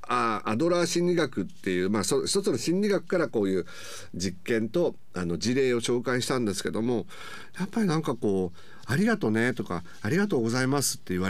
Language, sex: Japanese, male